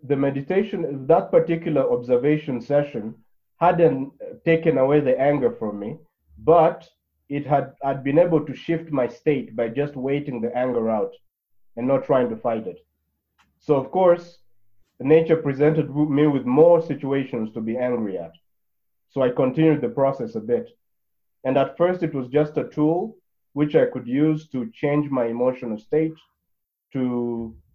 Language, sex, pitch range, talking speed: English, male, 120-155 Hz, 160 wpm